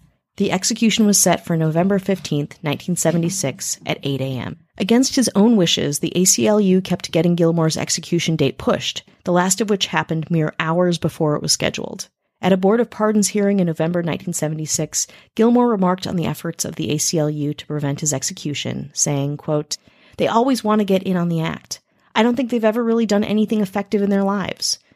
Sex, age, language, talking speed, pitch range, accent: female, 30-49, English, 190 wpm, 155-200 Hz, American